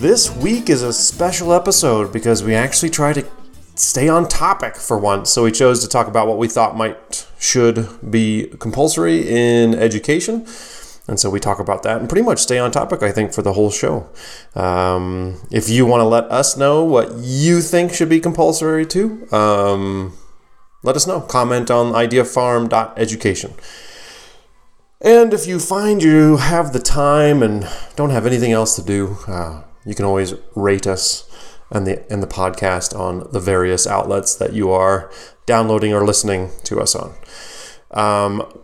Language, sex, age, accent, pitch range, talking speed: English, male, 30-49, American, 100-135 Hz, 170 wpm